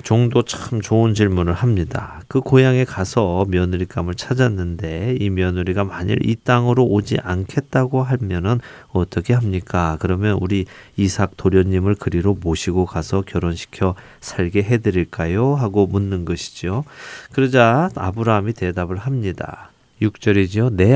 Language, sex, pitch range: Korean, male, 90-115 Hz